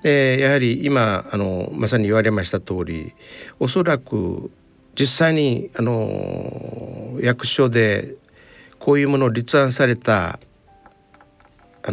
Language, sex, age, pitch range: Japanese, male, 60-79, 100-140 Hz